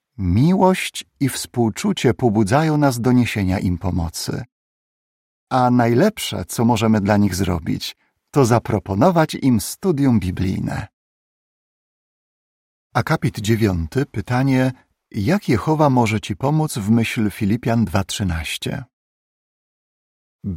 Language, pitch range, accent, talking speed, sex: Polish, 100-140 Hz, native, 95 wpm, male